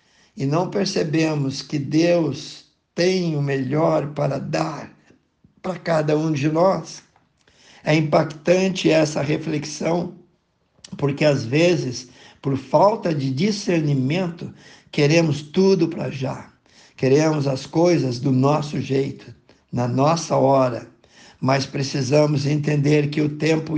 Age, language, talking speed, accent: 60-79, Portuguese, 115 wpm, Brazilian